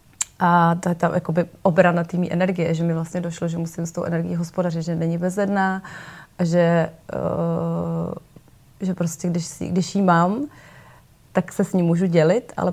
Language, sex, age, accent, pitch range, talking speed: Czech, female, 30-49, native, 170-185 Hz, 175 wpm